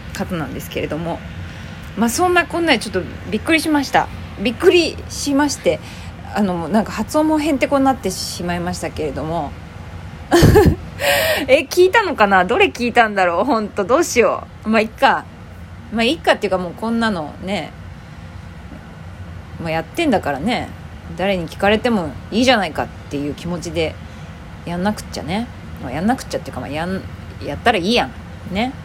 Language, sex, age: Japanese, female, 20-39